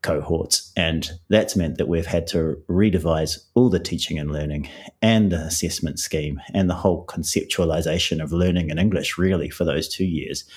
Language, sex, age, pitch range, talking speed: English, male, 30-49, 85-100 Hz, 175 wpm